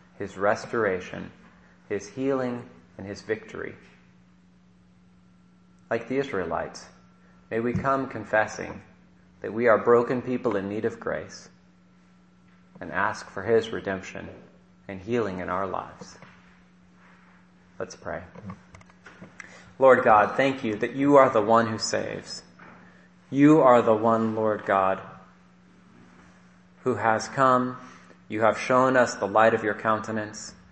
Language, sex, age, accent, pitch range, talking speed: English, male, 30-49, American, 90-120 Hz, 125 wpm